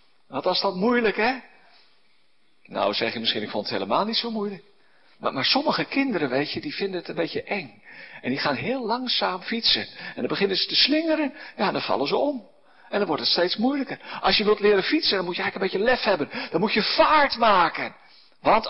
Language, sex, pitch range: Dutch, male, 195-270 Hz